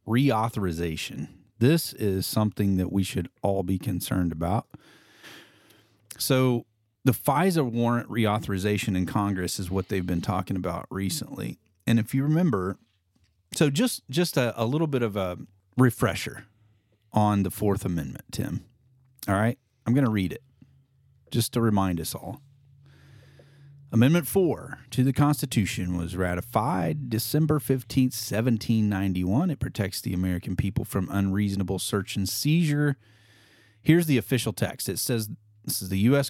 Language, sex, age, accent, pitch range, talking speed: English, male, 40-59, American, 100-130 Hz, 140 wpm